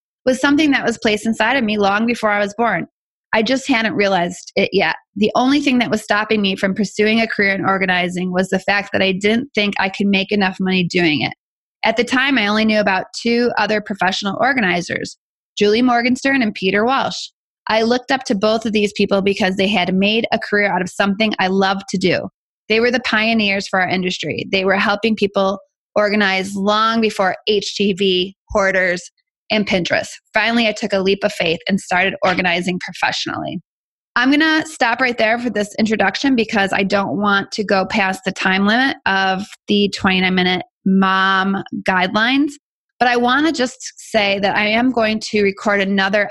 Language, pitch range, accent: English, 190-225 Hz, American